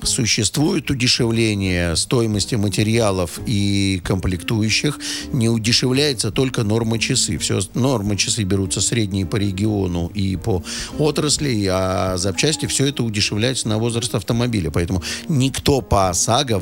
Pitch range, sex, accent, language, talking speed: 95-120 Hz, male, native, Russian, 115 wpm